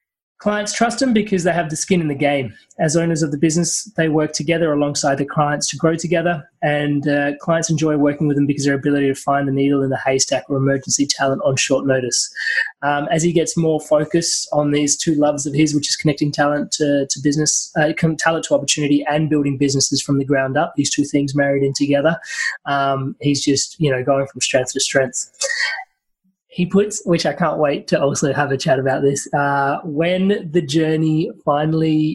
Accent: Australian